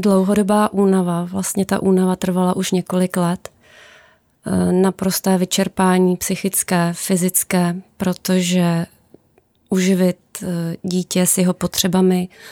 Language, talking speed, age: Czech, 90 wpm, 20-39